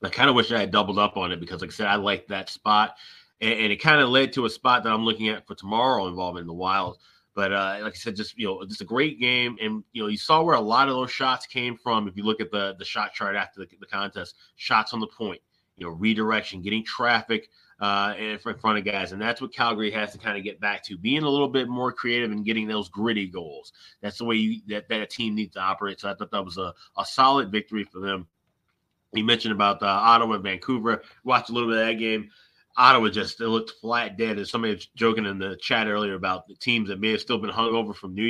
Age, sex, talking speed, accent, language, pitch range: 30-49, male, 265 wpm, American, English, 100-115 Hz